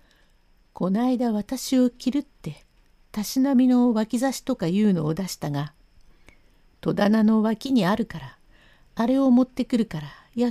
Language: Japanese